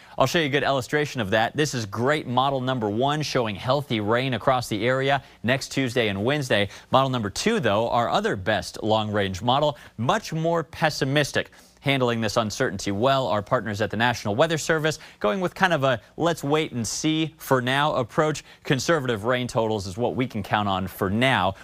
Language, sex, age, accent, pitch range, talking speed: English, male, 30-49, American, 105-145 Hz, 195 wpm